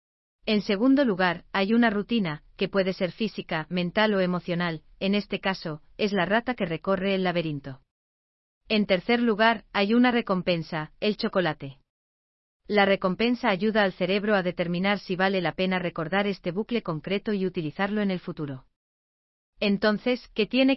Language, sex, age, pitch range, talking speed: Spanish, female, 40-59, 165-205 Hz, 155 wpm